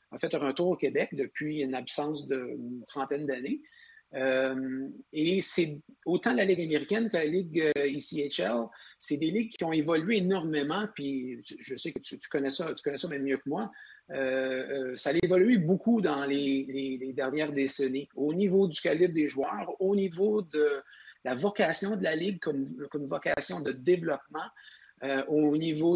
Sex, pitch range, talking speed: male, 140-175 Hz, 180 wpm